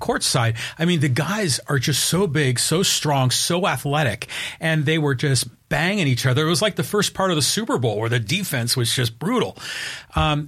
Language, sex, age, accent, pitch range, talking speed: English, male, 40-59, American, 125-165 Hz, 220 wpm